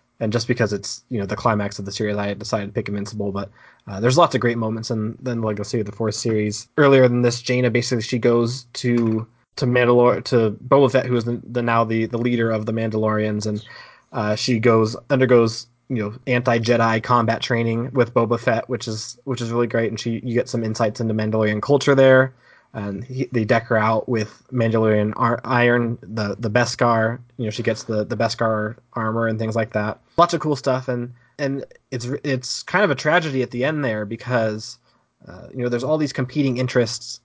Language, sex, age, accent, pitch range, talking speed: English, male, 20-39, American, 110-125 Hz, 220 wpm